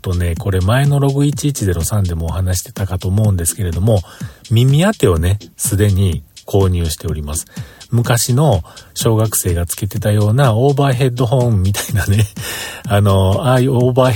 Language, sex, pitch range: Japanese, male, 95-130 Hz